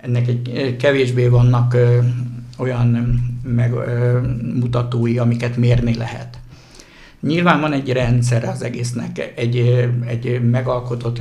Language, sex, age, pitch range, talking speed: Hungarian, male, 60-79, 120-125 Hz, 110 wpm